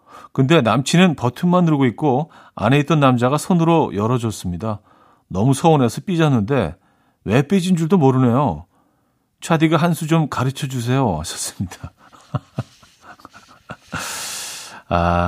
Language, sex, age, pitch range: Korean, male, 50-69, 115-160 Hz